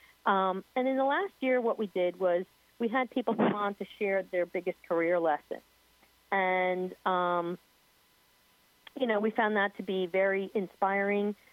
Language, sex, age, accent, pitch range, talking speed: English, female, 40-59, American, 175-210 Hz, 165 wpm